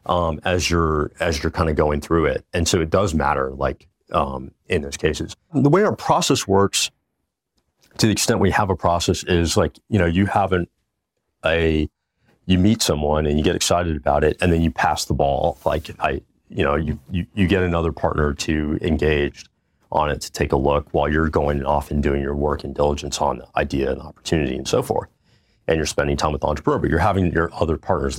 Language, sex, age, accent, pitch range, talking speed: English, male, 40-59, American, 75-95 Hz, 215 wpm